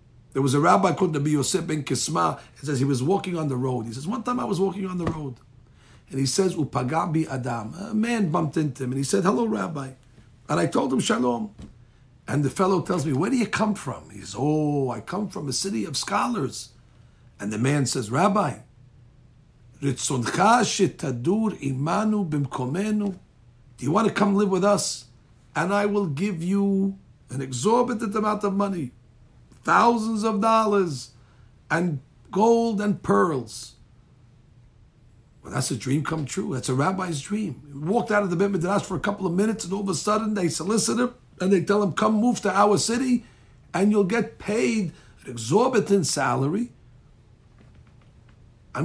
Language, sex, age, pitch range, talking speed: English, male, 50-69, 125-200 Hz, 180 wpm